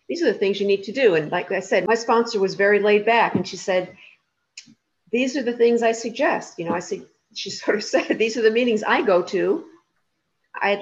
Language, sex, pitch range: English, female, 180-225 Hz